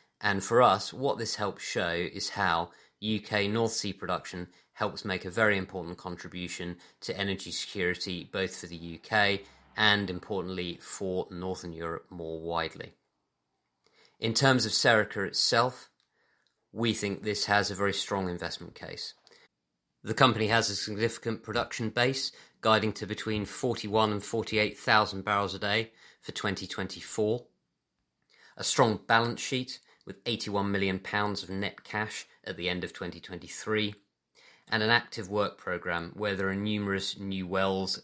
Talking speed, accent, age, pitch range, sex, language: 145 wpm, British, 30-49, 90-110 Hz, male, English